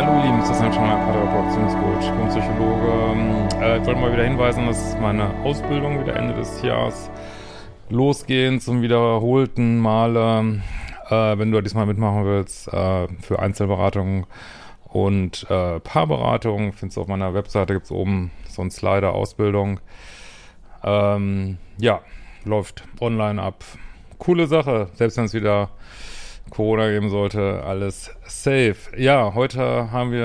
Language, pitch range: German, 100-120 Hz